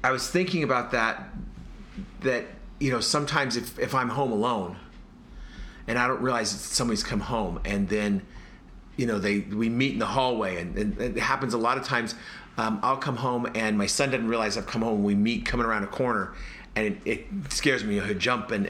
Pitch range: 105-130 Hz